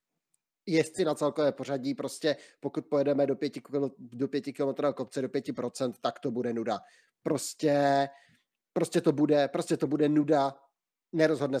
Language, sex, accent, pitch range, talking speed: Czech, male, native, 135-155 Hz, 145 wpm